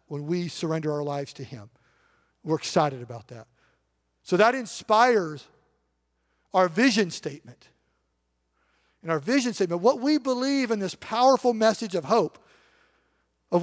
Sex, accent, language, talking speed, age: male, American, English, 135 wpm, 50-69